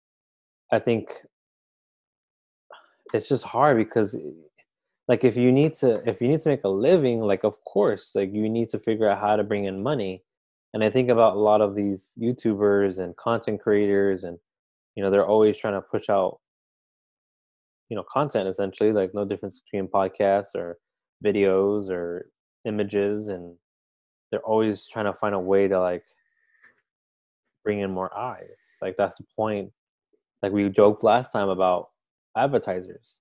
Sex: male